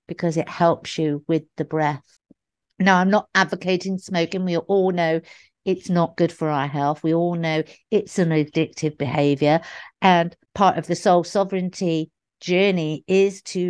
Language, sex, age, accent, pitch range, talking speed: English, female, 50-69, British, 155-185 Hz, 160 wpm